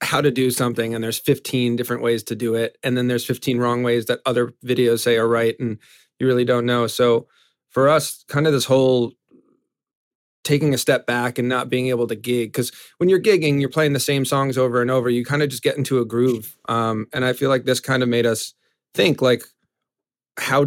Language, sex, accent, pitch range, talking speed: English, male, American, 120-140 Hz, 230 wpm